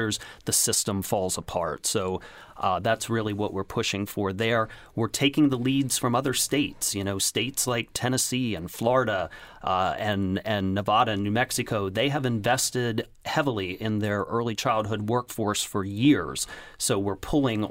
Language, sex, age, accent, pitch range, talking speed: English, male, 30-49, American, 105-130 Hz, 165 wpm